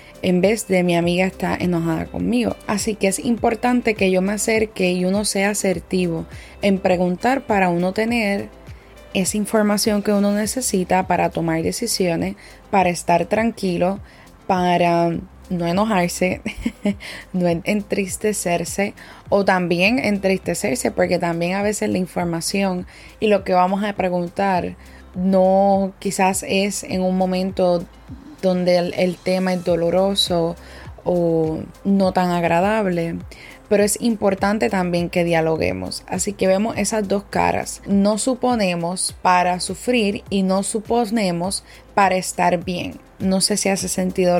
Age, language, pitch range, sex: 20-39, Spanish, 180-205 Hz, female